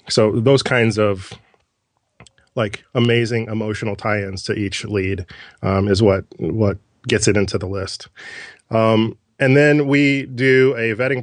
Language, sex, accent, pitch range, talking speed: English, male, American, 100-120 Hz, 145 wpm